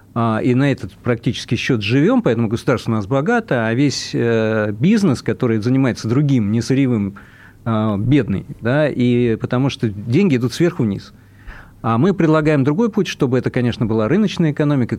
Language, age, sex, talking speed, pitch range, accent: Russian, 40-59, male, 155 wpm, 115-145 Hz, native